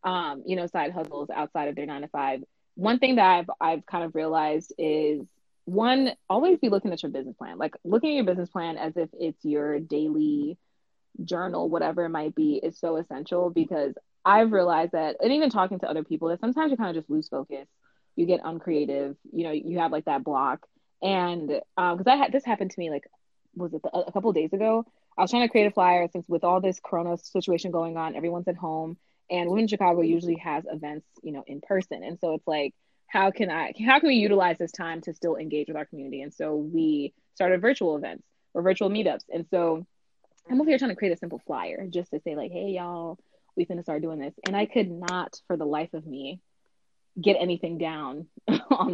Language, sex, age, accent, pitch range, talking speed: English, female, 20-39, American, 160-195 Hz, 225 wpm